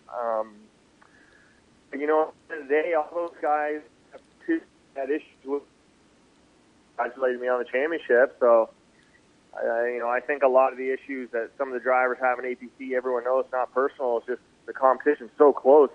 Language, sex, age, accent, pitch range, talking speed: English, male, 30-49, American, 120-150 Hz, 170 wpm